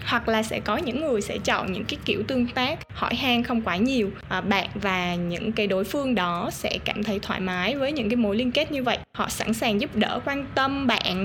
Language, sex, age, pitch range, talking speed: Vietnamese, female, 20-39, 195-240 Hz, 250 wpm